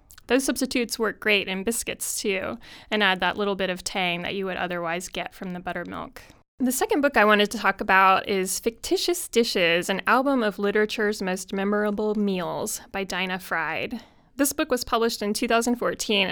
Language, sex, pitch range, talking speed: English, female, 195-245 Hz, 180 wpm